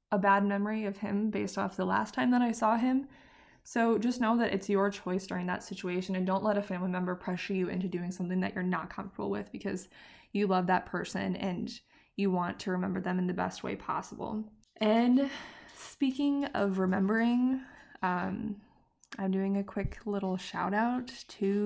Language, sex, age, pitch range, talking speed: English, female, 20-39, 185-215 Hz, 190 wpm